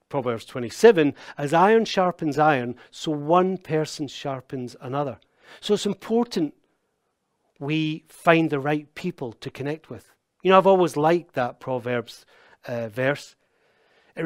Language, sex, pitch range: English, male, 135-180 Hz